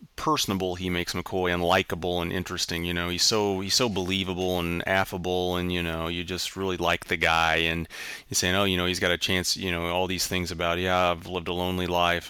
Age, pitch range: 30-49, 85-95 Hz